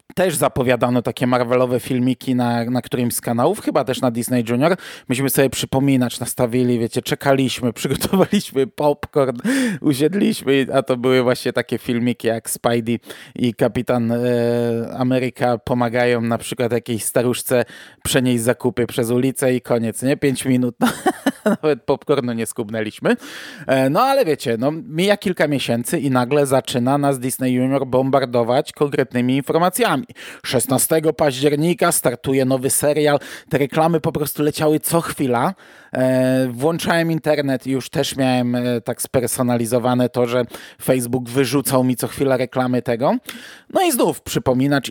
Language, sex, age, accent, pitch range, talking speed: Polish, male, 20-39, native, 125-145 Hz, 135 wpm